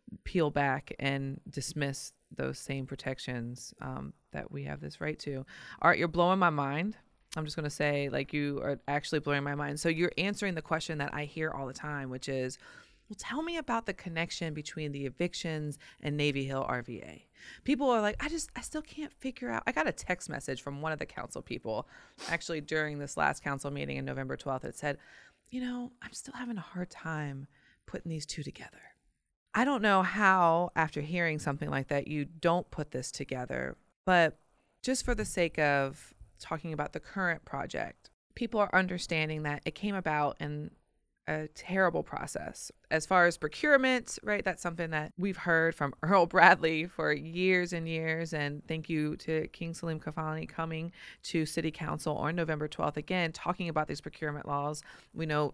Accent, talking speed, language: American, 190 wpm, English